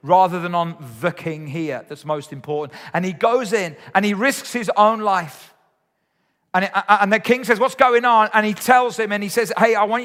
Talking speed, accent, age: 225 wpm, British, 40-59